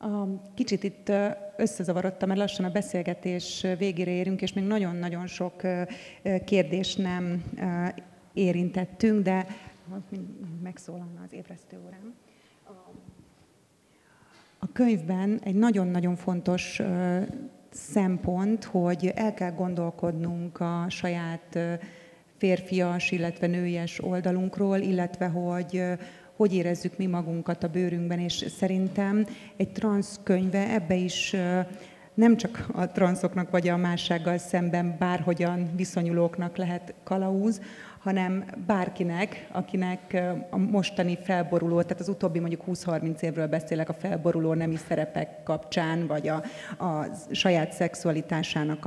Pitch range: 170-190 Hz